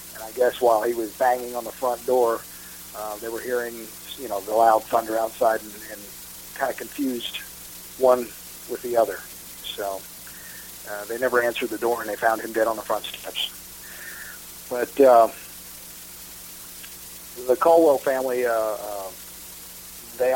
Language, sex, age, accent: English, male, 40-59, American